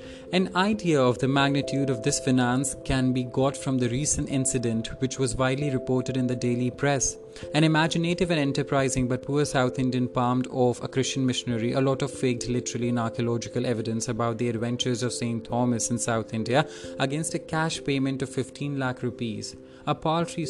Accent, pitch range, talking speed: Indian, 125-140 Hz, 185 wpm